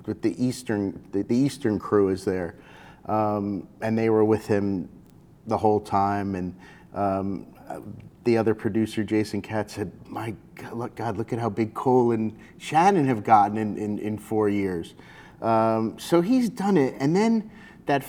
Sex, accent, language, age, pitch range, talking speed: male, American, English, 30-49, 110-140 Hz, 175 wpm